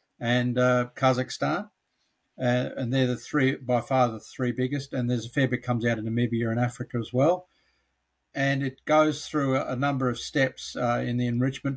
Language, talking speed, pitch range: English, 195 wpm, 120-140 Hz